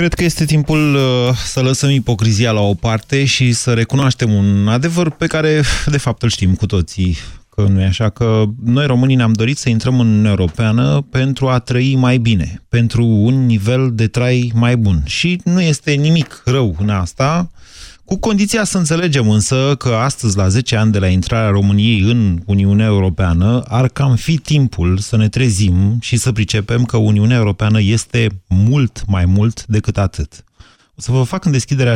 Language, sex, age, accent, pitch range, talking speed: Romanian, male, 30-49, native, 100-130 Hz, 175 wpm